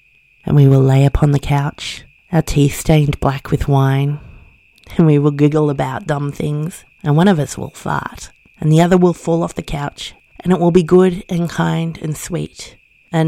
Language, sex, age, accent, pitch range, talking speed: English, female, 30-49, Australian, 155-205 Hz, 200 wpm